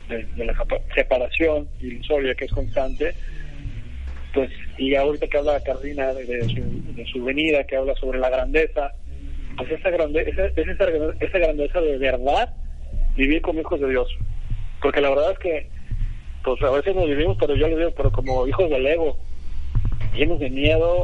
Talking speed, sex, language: 175 wpm, male, Spanish